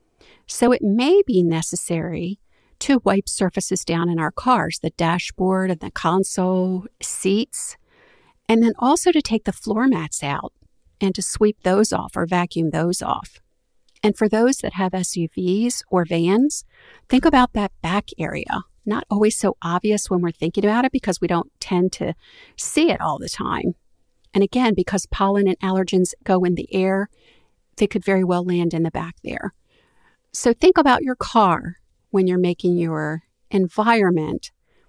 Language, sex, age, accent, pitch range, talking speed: English, female, 50-69, American, 175-230 Hz, 165 wpm